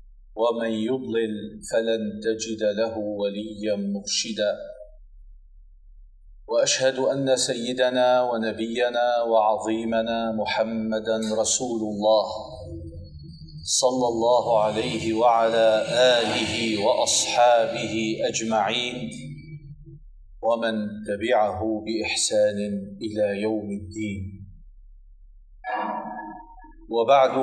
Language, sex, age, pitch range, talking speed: Arabic, male, 40-59, 110-130 Hz, 65 wpm